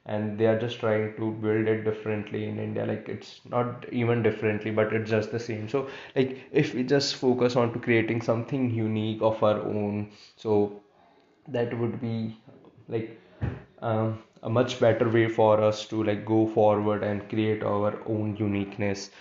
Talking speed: 175 wpm